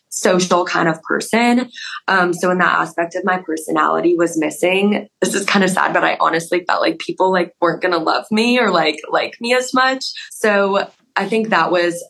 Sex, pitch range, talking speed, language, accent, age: female, 160-190 Hz, 210 wpm, English, American, 20-39